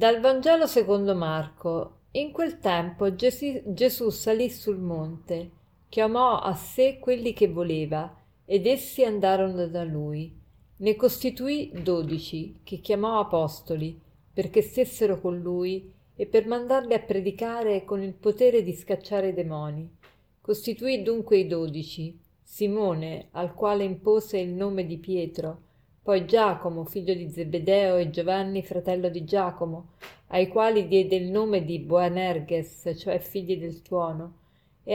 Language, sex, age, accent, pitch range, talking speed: Italian, female, 40-59, native, 170-215 Hz, 135 wpm